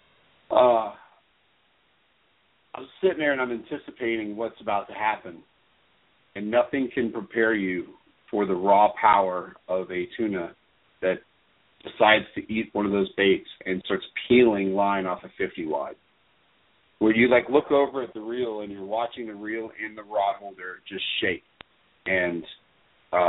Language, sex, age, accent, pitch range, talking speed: English, male, 40-59, American, 95-125 Hz, 155 wpm